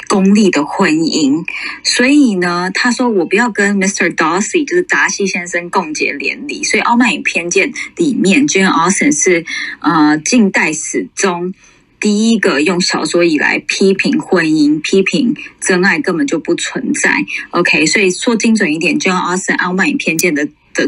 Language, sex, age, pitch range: Chinese, female, 20-39, 180-285 Hz